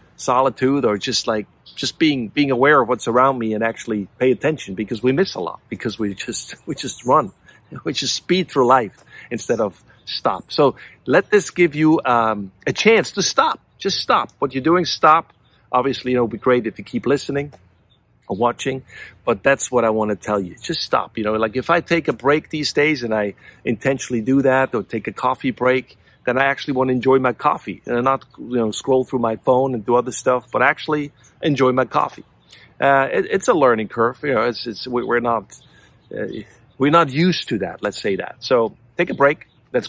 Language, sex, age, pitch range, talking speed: English, male, 50-69, 120-140 Hz, 210 wpm